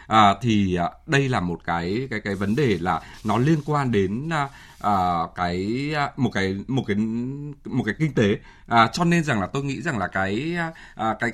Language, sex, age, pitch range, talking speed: Vietnamese, male, 20-39, 100-140 Hz, 175 wpm